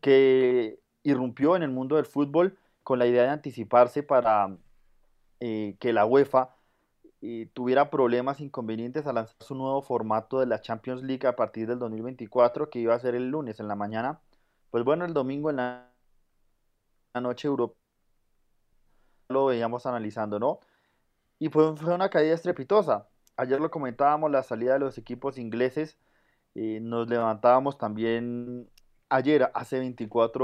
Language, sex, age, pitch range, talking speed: Spanish, male, 30-49, 115-140 Hz, 150 wpm